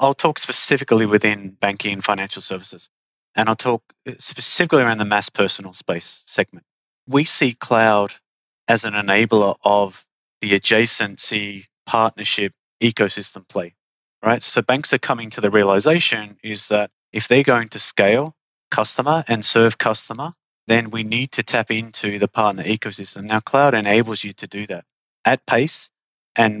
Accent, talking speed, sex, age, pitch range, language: Australian, 155 wpm, male, 30-49, 100-120 Hz, English